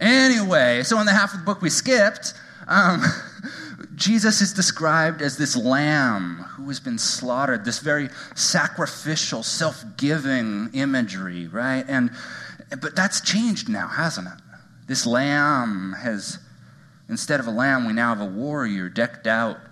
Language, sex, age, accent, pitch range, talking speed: English, male, 30-49, American, 110-155 Hz, 145 wpm